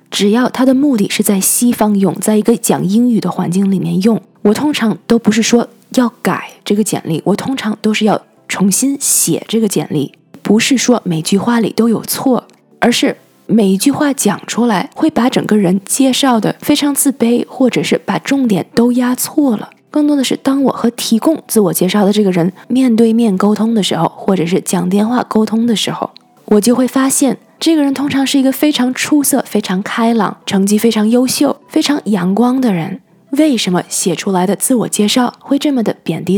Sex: female